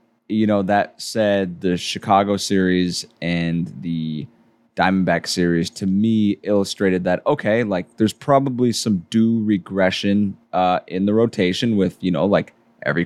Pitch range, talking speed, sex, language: 95-115 Hz, 140 wpm, male, English